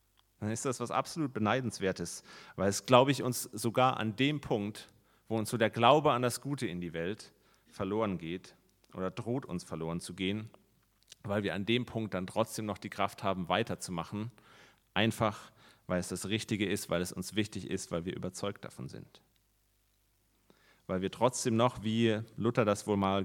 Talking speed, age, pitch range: 185 wpm, 30-49, 95-120 Hz